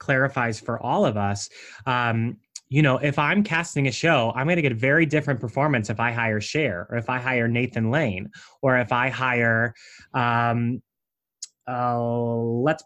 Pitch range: 120-155 Hz